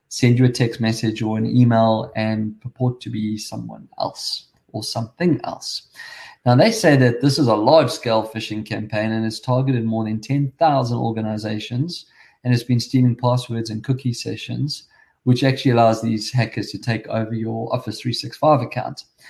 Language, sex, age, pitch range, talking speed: English, male, 20-39, 110-130 Hz, 170 wpm